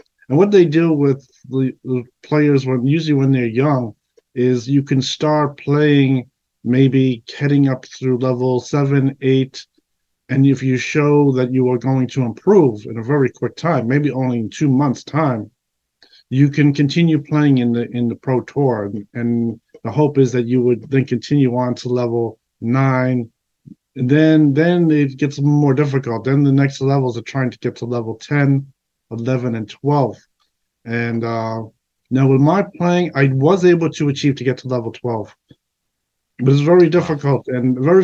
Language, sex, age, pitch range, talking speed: English, male, 50-69, 125-145 Hz, 175 wpm